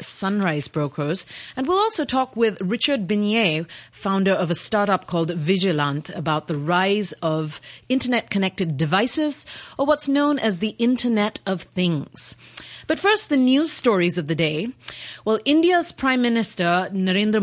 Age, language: 30-49, English